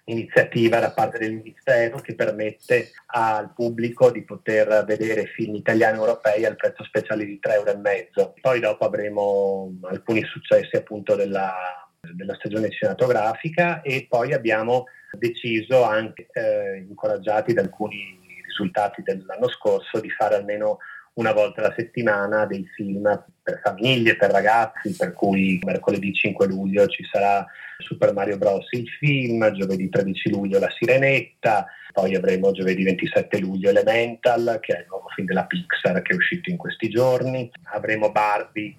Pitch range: 100-130 Hz